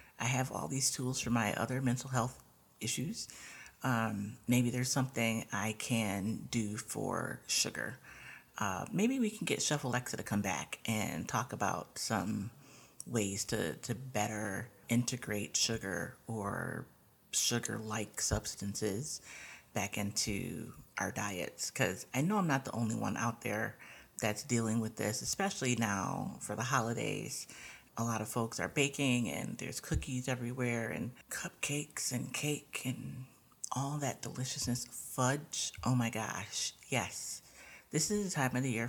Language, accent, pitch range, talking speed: English, American, 110-140 Hz, 150 wpm